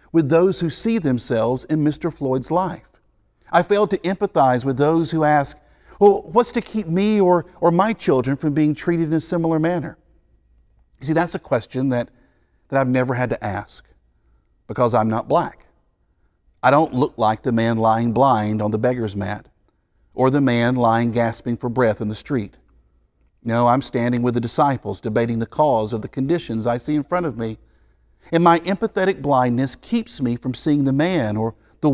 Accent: American